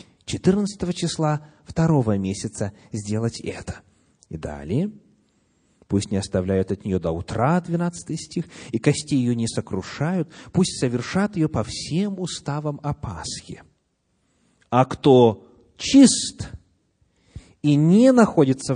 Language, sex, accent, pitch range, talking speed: Russian, male, native, 115-170 Hz, 115 wpm